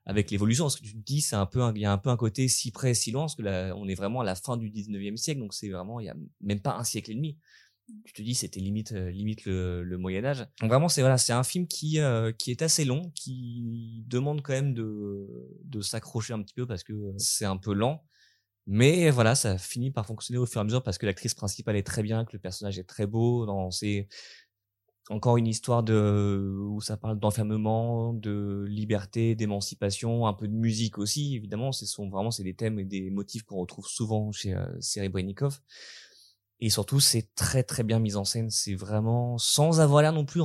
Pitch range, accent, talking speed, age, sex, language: 105-120 Hz, French, 235 wpm, 20-39, male, French